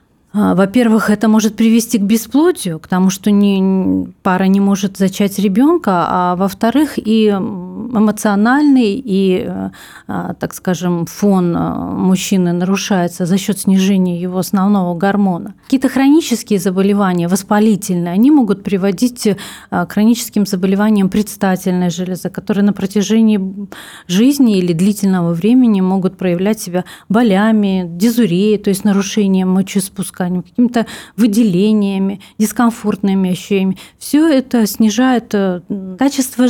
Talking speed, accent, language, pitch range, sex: 110 wpm, native, Russian, 185-215 Hz, female